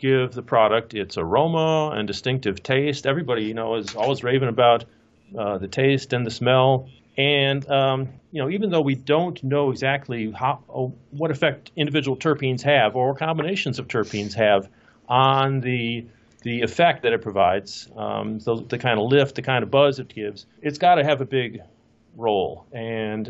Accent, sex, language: American, male, English